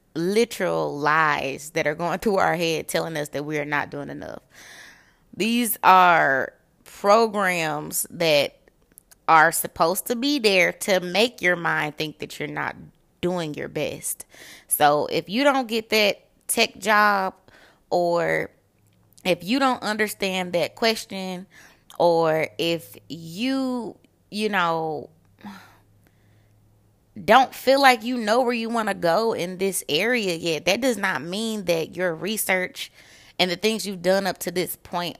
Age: 20-39